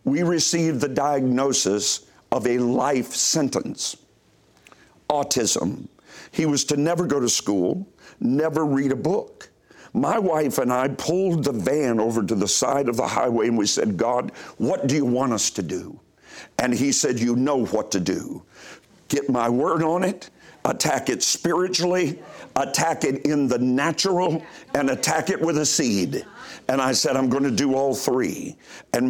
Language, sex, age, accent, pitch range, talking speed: English, male, 50-69, American, 130-185 Hz, 170 wpm